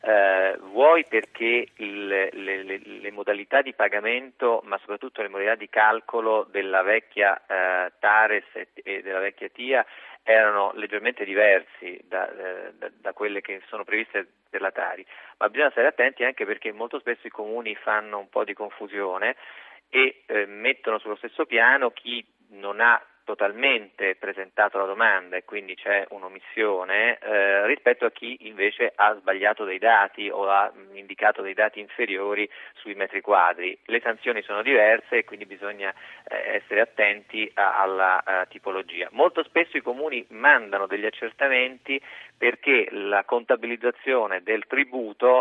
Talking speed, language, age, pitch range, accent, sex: 150 wpm, Italian, 40-59, 100-125 Hz, native, male